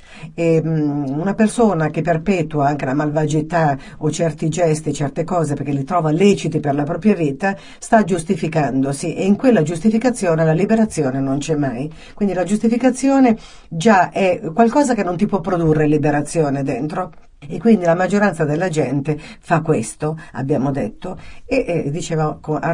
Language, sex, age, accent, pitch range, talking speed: Italian, female, 50-69, native, 145-180 Hz, 150 wpm